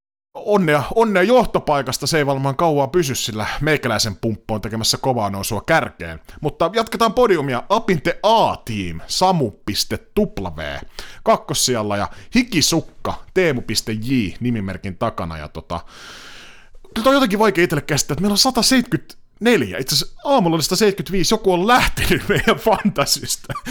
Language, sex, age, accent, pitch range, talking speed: Finnish, male, 30-49, native, 110-185 Hz, 125 wpm